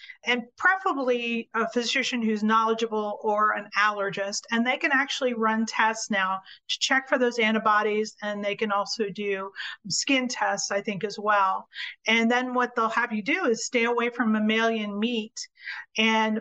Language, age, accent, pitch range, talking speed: English, 40-59, American, 215-255 Hz, 170 wpm